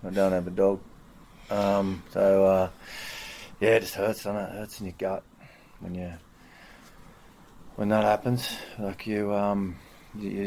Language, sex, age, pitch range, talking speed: English, male, 30-49, 95-105 Hz, 165 wpm